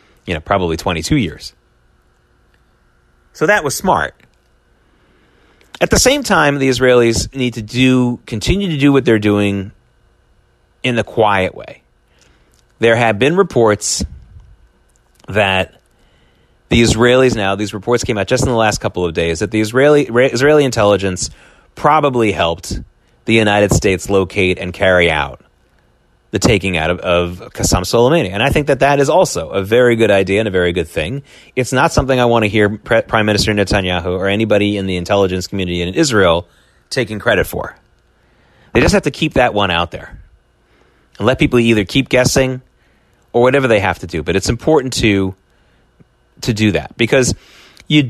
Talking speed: 170 wpm